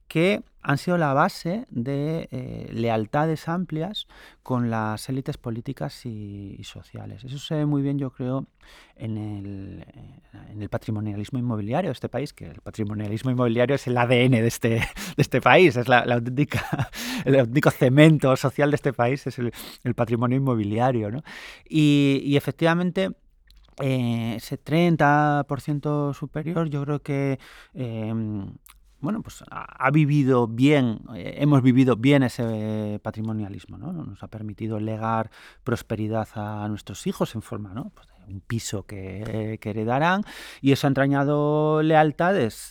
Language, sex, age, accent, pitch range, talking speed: English, male, 30-49, Spanish, 110-145 Hz, 155 wpm